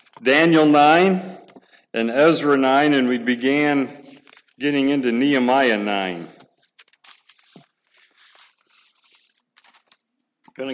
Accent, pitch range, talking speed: American, 115-145 Hz, 75 wpm